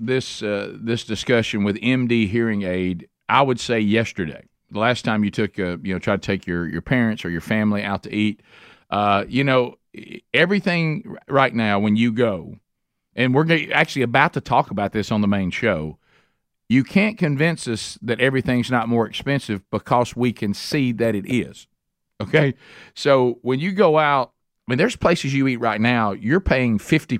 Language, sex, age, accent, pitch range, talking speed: English, male, 50-69, American, 105-135 Hz, 190 wpm